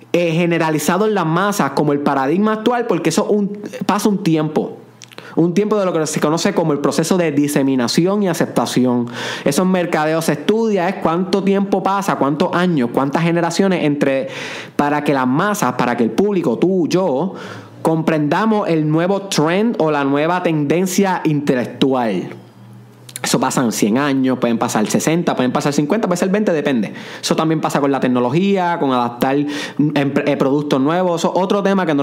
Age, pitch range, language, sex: 20-39, 150-205 Hz, Spanish, male